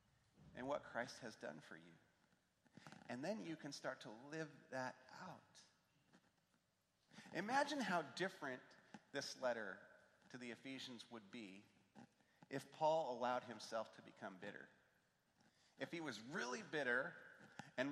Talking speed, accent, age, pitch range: 130 wpm, American, 40-59, 125-175 Hz